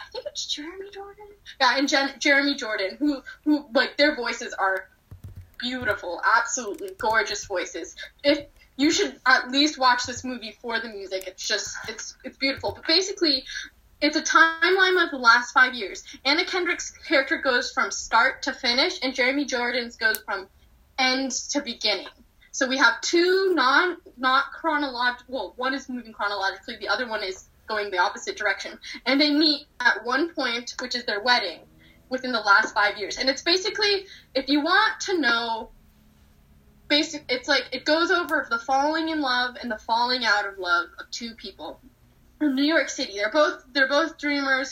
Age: 10-29